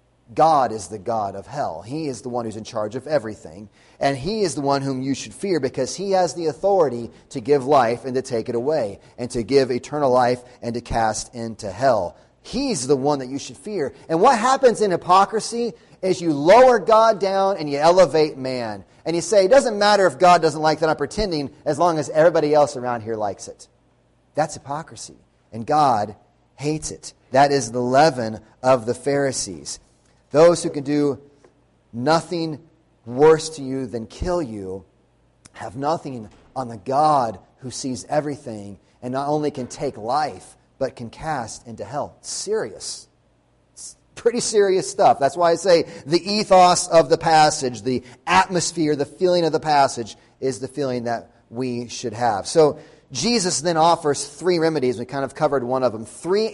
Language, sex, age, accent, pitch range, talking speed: English, male, 30-49, American, 120-165 Hz, 185 wpm